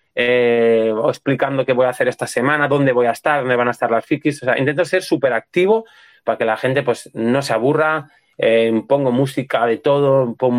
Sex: male